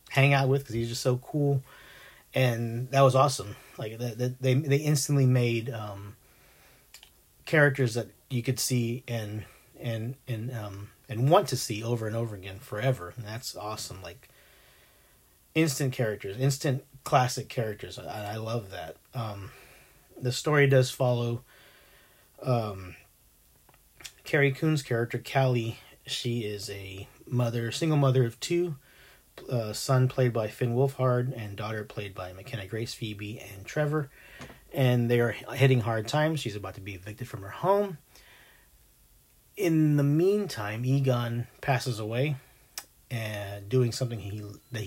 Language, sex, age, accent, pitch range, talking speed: English, male, 40-59, American, 110-135 Hz, 145 wpm